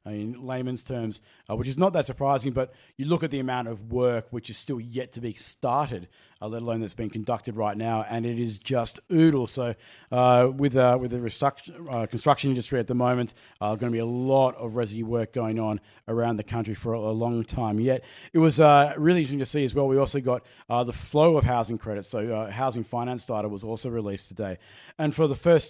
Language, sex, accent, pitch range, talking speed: English, male, Australian, 115-135 Hz, 240 wpm